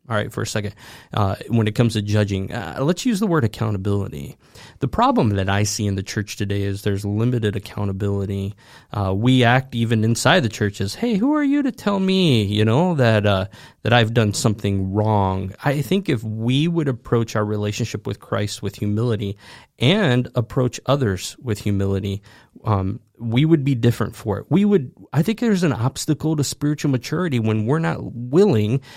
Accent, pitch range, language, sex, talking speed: American, 105-140 Hz, English, male, 185 wpm